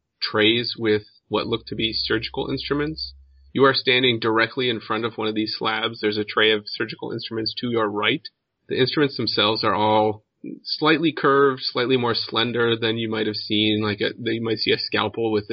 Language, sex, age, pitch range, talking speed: English, male, 30-49, 105-115 Hz, 195 wpm